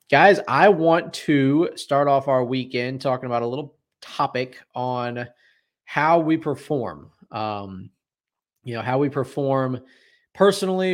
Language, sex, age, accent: English, male, 20-39, American